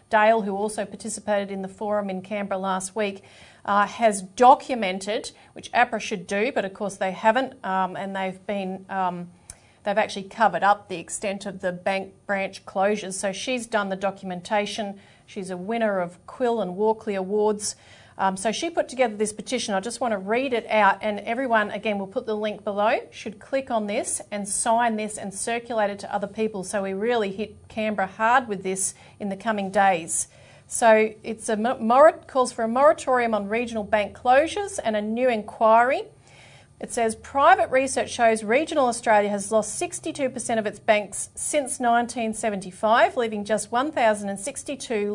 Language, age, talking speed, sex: English, 40-59, 175 wpm, female